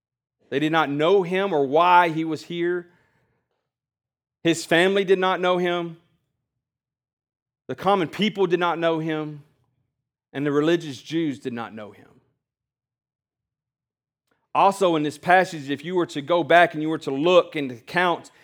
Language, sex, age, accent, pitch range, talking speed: English, male, 40-59, American, 130-170 Hz, 160 wpm